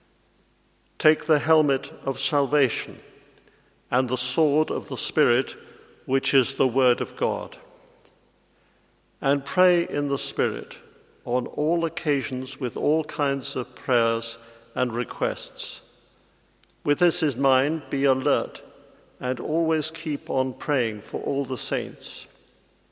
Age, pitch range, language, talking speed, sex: 50-69, 125-150 Hz, English, 125 wpm, male